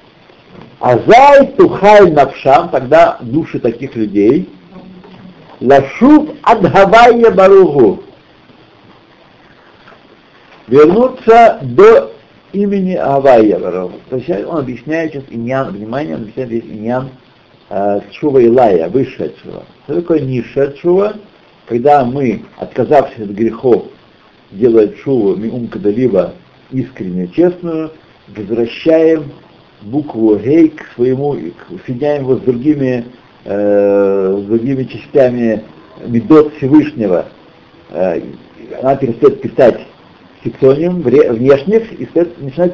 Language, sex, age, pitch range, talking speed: Russian, male, 60-79, 120-175 Hz, 90 wpm